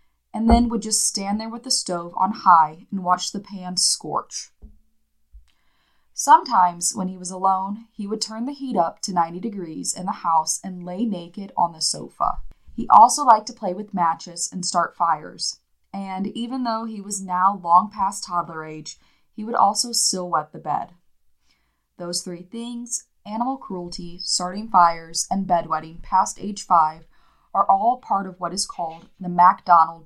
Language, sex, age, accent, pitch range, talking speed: English, female, 20-39, American, 170-220 Hz, 175 wpm